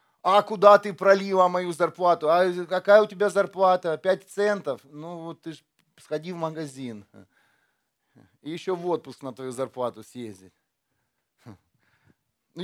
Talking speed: 125 wpm